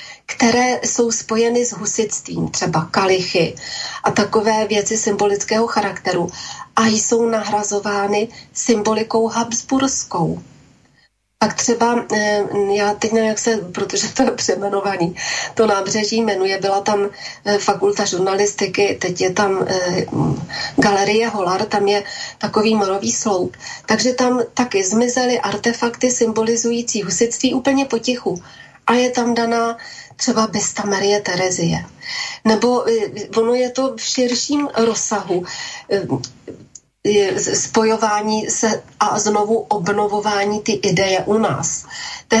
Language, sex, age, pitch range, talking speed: Slovak, female, 30-49, 205-235 Hz, 110 wpm